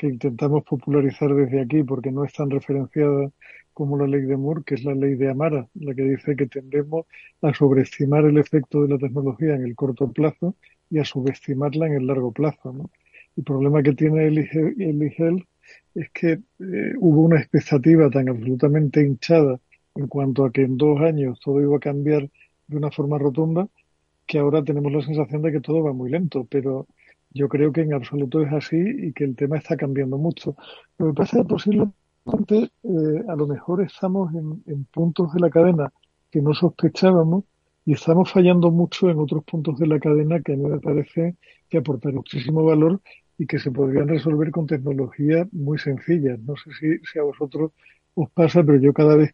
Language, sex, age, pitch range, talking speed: Spanish, male, 50-69, 140-160 Hz, 195 wpm